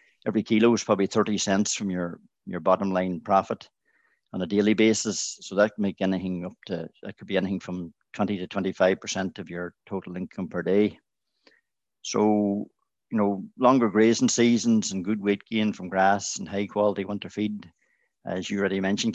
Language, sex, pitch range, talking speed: English, male, 95-110 Hz, 190 wpm